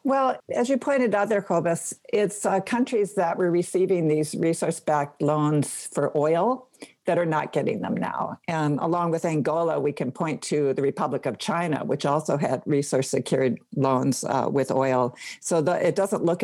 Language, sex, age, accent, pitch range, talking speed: English, female, 60-79, American, 145-195 Hz, 175 wpm